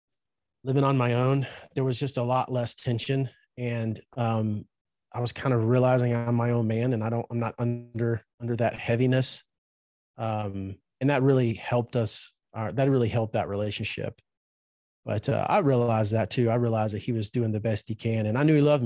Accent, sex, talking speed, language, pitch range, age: American, male, 205 wpm, English, 110-130 Hz, 30-49